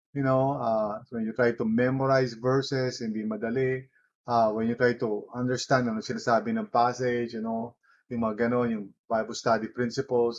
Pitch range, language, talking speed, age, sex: 120-145 Hz, English, 175 wpm, 30-49, male